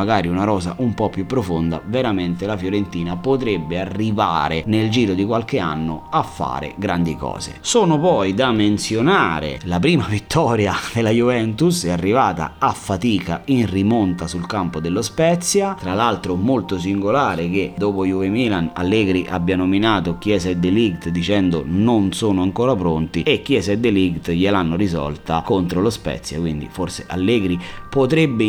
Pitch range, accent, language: 85-105 Hz, native, Italian